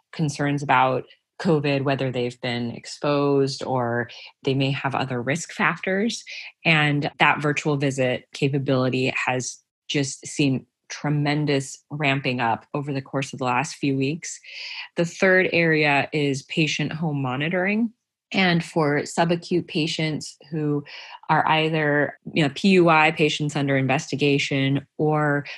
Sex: female